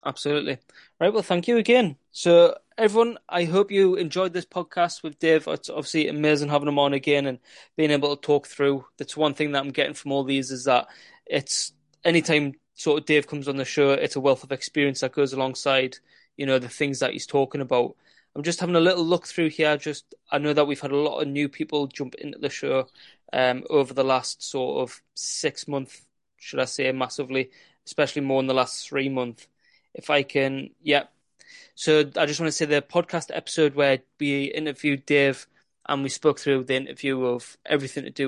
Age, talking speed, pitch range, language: 20-39, 210 wpm, 135-155 Hz, English